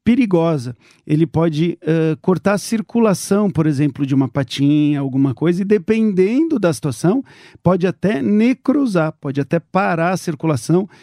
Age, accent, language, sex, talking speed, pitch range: 50-69, Brazilian, English, male, 135 wpm, 150-185 Hz